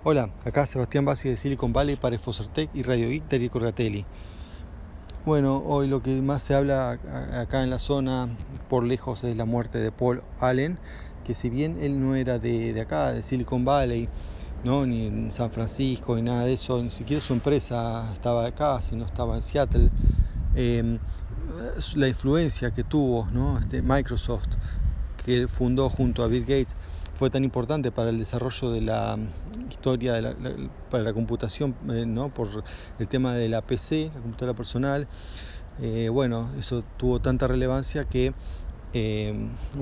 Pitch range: 105-130 Hz